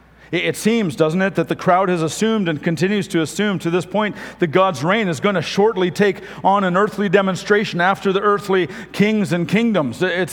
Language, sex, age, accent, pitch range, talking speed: English, male, 50-69, American, 160-205 Hz, 205 wpm